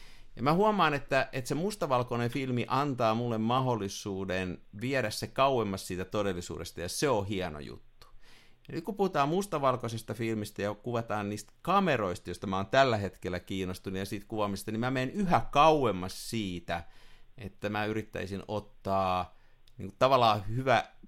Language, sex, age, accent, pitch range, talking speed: Finnish, male, 50-69, native, 100-135 Hz, 150 wpm